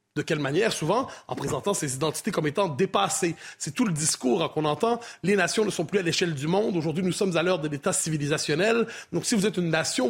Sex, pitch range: male, 160-215 Hz